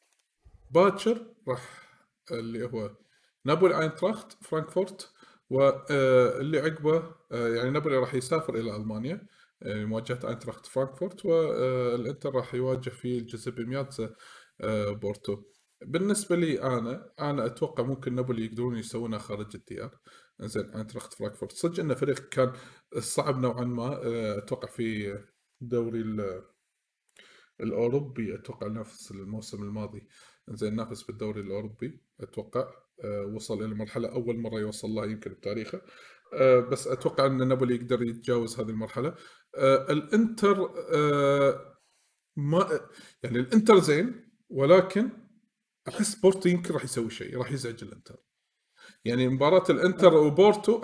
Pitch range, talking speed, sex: 115-170 Hz, 115 wpm, male